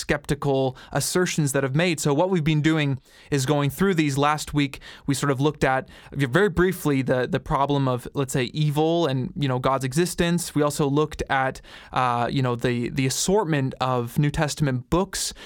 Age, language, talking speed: 20-39, English, 190 wpm